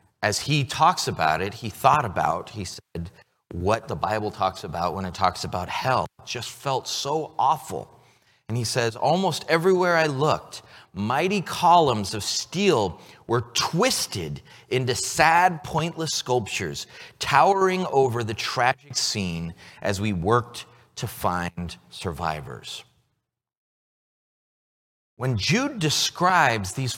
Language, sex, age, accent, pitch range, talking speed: English, male, 30-49, American, 110-175 Hz, 125 wpm